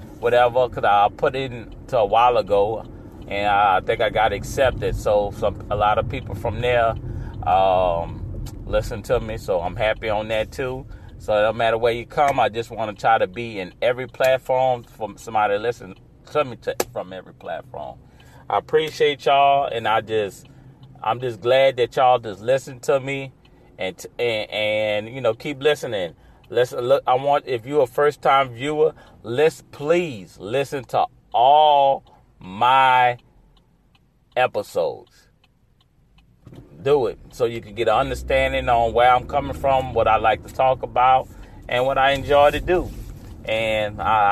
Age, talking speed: 30-49, 170 wpm